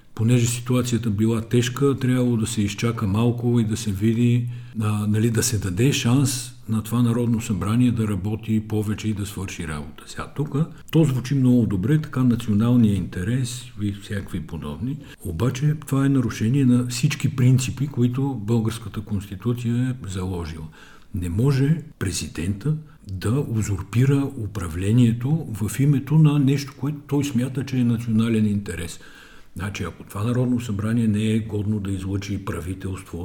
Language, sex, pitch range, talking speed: Bulgarian, male, 100-125 Hz, 150 wpm